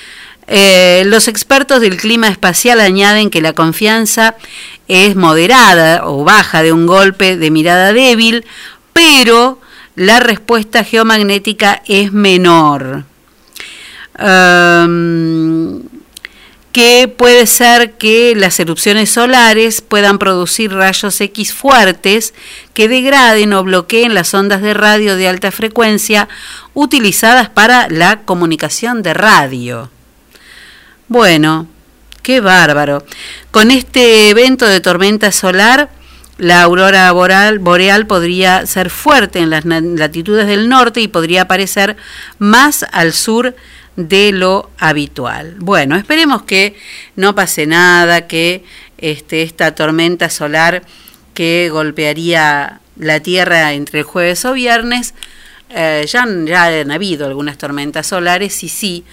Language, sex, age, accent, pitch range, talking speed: Spanish, female, 50-69, Argentinian, 170-225 Hz, 115 wpm